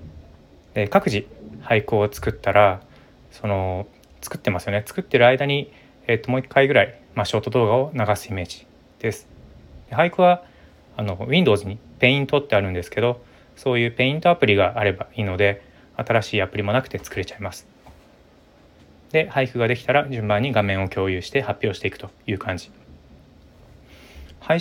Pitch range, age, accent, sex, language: 100-130 Hz, 20-39, native, male, Japanese